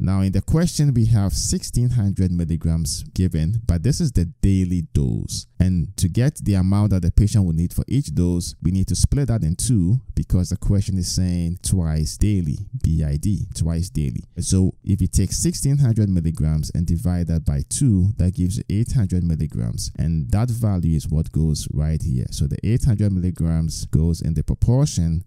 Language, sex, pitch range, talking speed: English, male, 85-110 Hz, 180 wpm